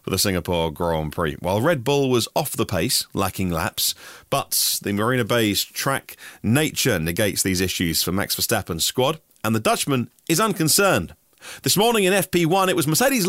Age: 40-59